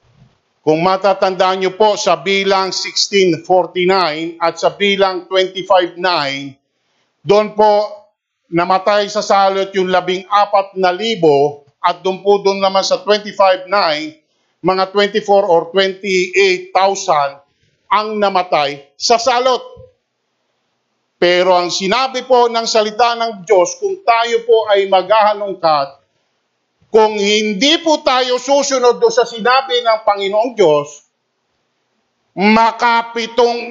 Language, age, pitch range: English, 50-69, 185-260 Hz